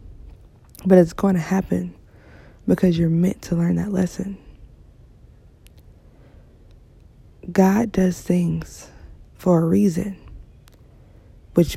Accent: American